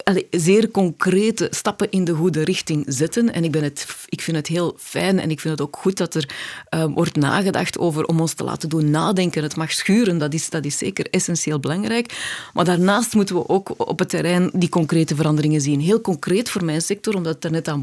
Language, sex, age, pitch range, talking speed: Dutch, female, 30-49, 160-205 Hz, 220 wpm